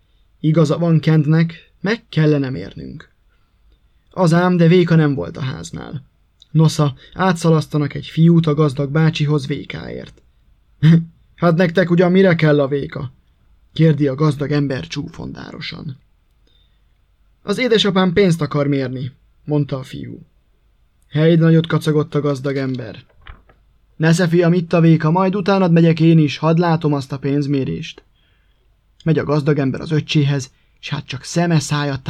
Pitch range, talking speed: 140-165 Hz, 140 wpm